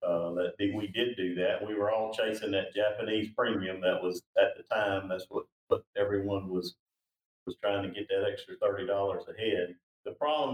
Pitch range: 95-120 Hz